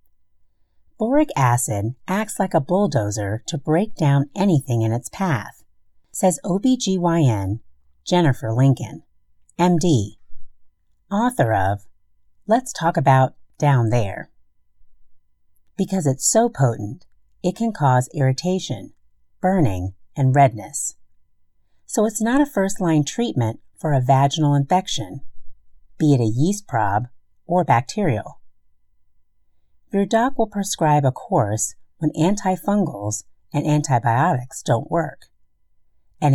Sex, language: female, English